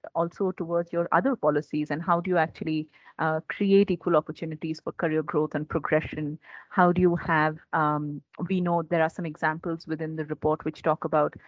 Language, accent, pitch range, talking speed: English, Indian, 155-180 Hz, 190 wpm